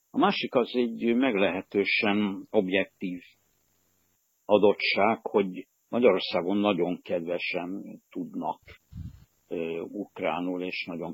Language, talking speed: Hungarian, 85 wpm